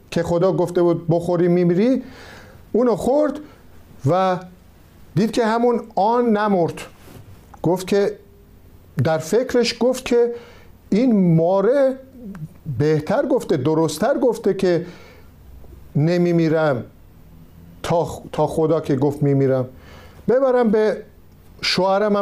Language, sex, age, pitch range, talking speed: Persian, male, 50-69, 150-205 Hz, 95 wpm